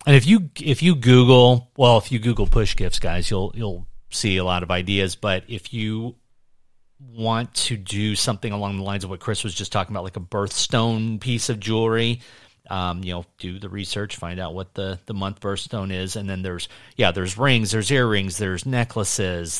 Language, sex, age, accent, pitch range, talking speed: English, male, 30-49, American, 95-115 Hz, 205 wpm